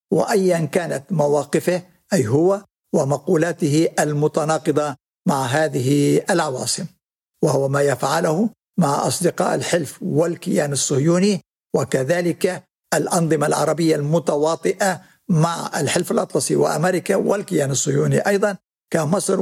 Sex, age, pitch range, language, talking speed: male, 60-79, 145-180 Hz, Arabic, 95 wpm